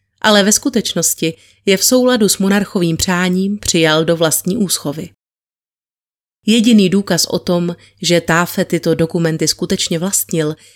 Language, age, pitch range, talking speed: Czech, 30-49, 165-185 Hz, 130 wpm